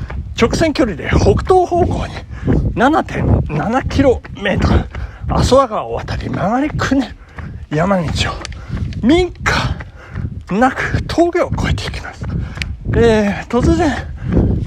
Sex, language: male, Japanese